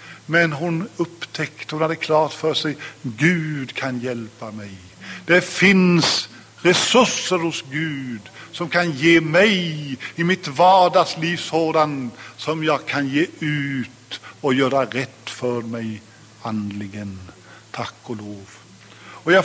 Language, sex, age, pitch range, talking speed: English, male, 60-79, 120-175 Hz, 125 wpm